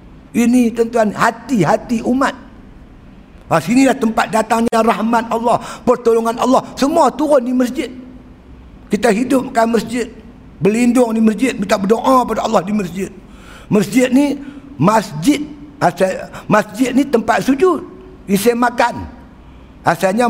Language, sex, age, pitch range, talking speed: Malay, male, 60-79, 210-265 Hz, 120 wpm